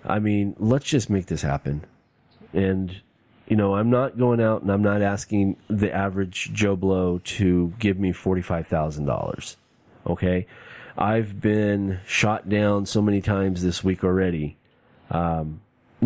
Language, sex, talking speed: English, male, 145 wpm